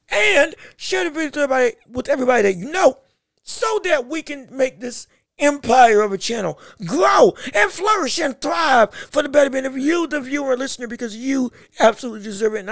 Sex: male